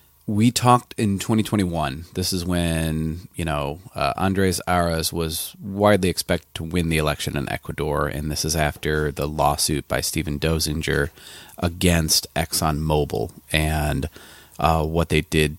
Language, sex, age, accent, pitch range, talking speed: English, male, 30-49, American, 80-90 Hz, 140 wpm